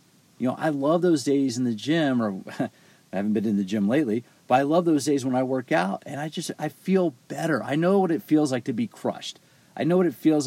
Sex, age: male, 40-59